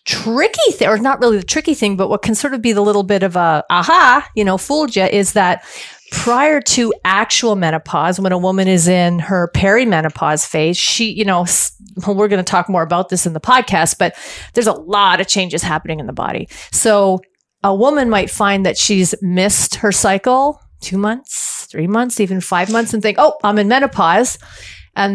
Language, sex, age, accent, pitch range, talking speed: English, female, 40-59, American, 180-225 Hz, 205 wpm